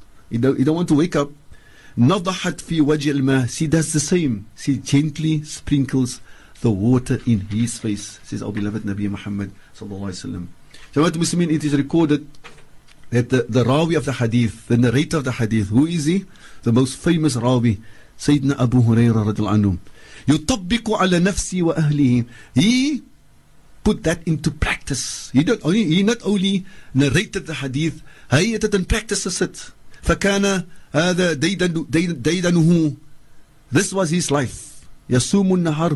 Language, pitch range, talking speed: English, 125-180 Hz, 120 wpm